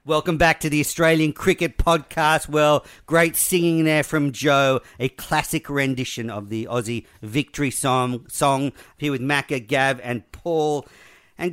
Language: English